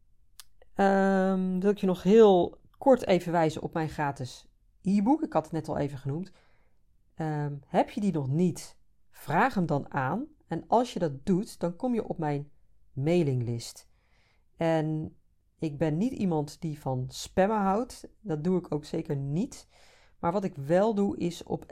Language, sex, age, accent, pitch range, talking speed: Dutch, female, 40-59, Dutch, 145-185 Hz, 175 wpm